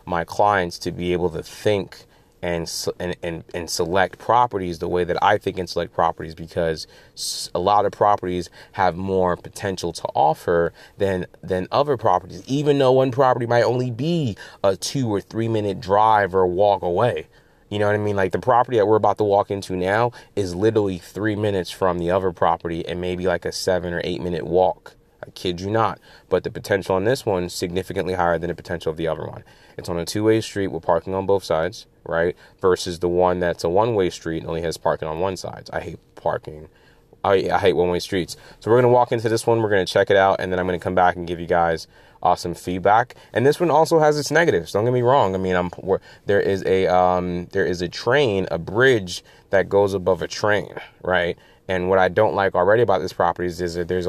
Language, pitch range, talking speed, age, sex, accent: English, 90-105 Hz, 225 wpm, 20-39, male, American